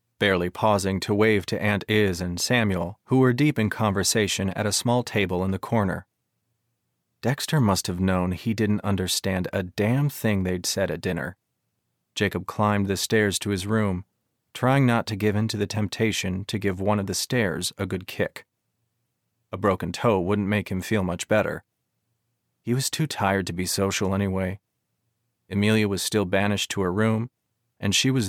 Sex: male